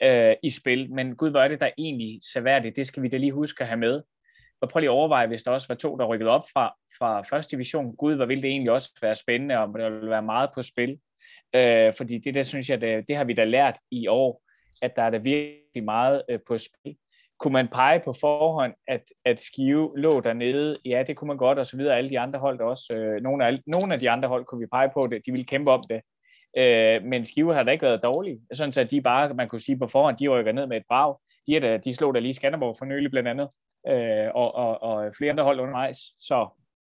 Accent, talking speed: native, 255 wpm